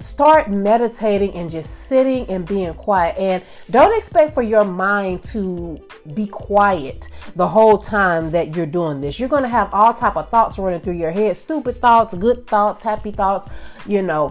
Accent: American